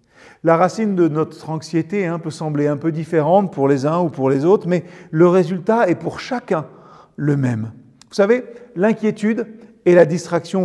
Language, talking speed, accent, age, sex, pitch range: French, 180 wpm, French, 40-59, male, 160-225 Hz